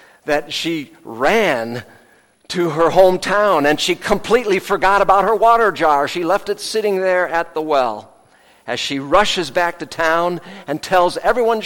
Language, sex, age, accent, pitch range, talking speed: English, male, 50-69, American, 145-195 Hz, 160 wpm